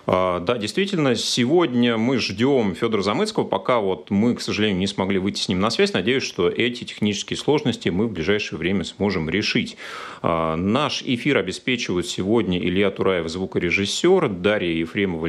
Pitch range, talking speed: 85-120 Hz, 155 wpm